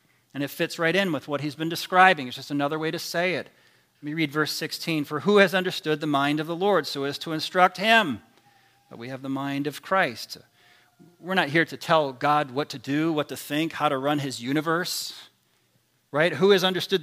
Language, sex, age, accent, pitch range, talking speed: English, male, 40-59, American, 150-195 Hz, 225 wpm